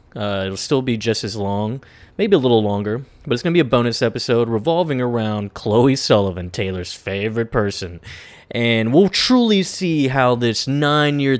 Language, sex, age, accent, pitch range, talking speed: English, male, 20-39, American, 105-130 Hz, 175 wpm